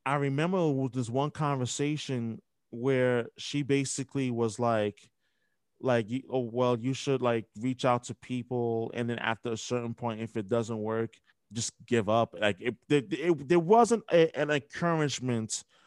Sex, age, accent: male, 20-39, American